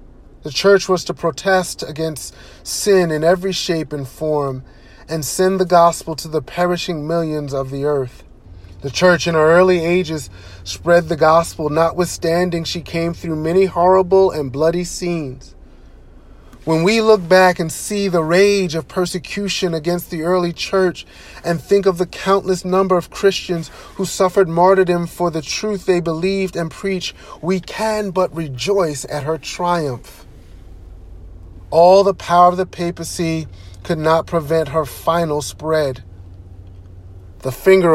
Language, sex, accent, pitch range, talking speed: English, male, American, 140-180 Hz, 150 wpm